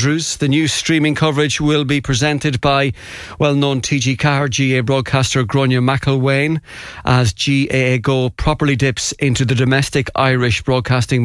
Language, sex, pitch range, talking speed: English, male, 130-150 Hz, 140 wpm